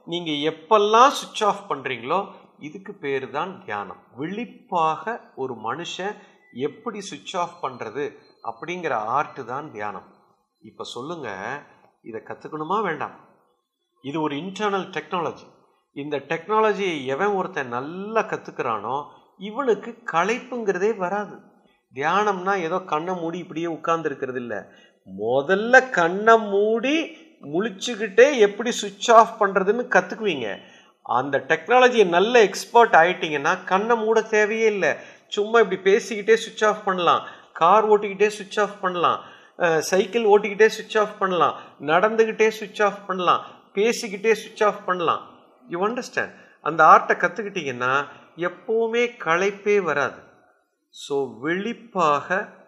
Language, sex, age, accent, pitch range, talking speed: Tamil, male, 50-69, native, 170-225 Hz, 110 wpm